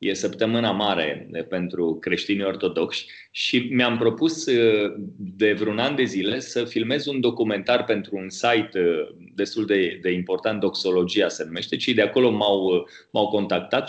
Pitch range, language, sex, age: 105-135 Hz, Romanian, male, 30-49